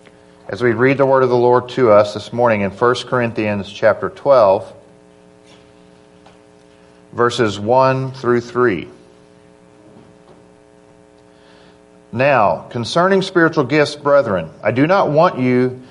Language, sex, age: English, male, 50-69